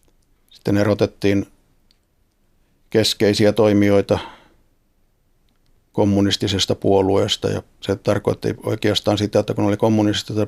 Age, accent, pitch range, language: 50-69, native, 100-110 Hz, Finnish